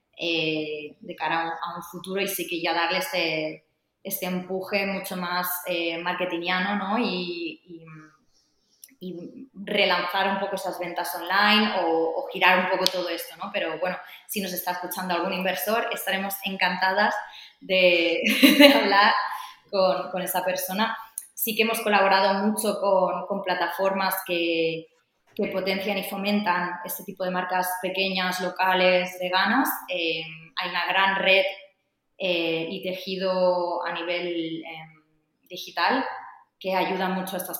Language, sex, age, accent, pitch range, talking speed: Spanish, female, 20-39, Spanish, 175-195 Hz, 145 wpm